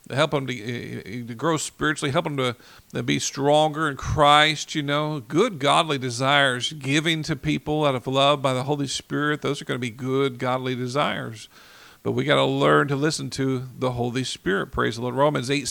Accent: American